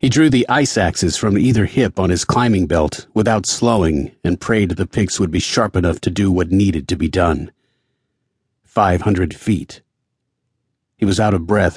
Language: English